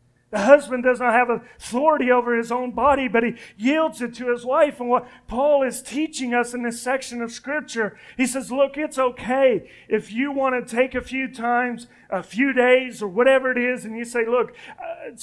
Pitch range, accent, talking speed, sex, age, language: 215-255 Hz, American, 210 wpm, male, 40-59, English